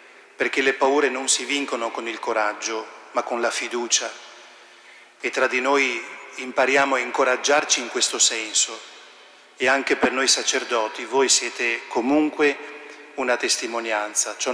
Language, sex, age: Italian, male, 30-49